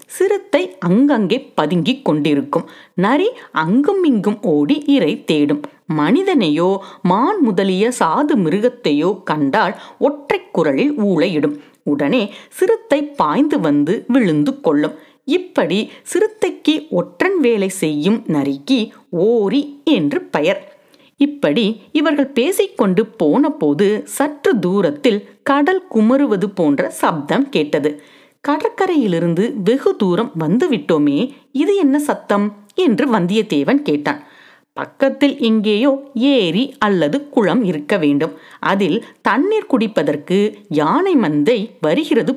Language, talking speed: Tamil, 95 wpm